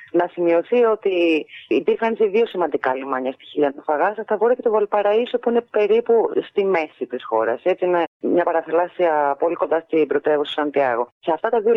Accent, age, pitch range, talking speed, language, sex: native, 30-49, 155-230 Hz, 185 wpm, Greek, female